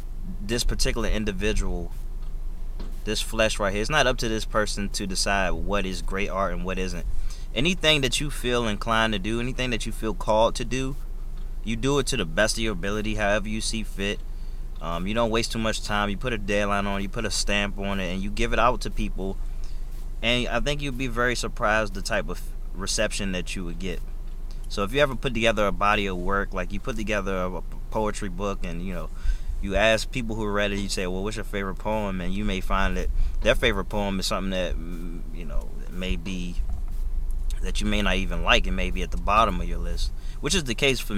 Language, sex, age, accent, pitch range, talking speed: English, male, 20-39, American, 85-110 Hz, 230 wpm